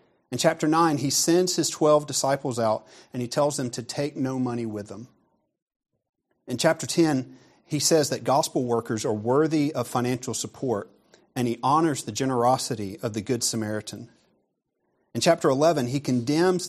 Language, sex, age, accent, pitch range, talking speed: English, male, 40-59, American, 120-150 Hz, 165 wpm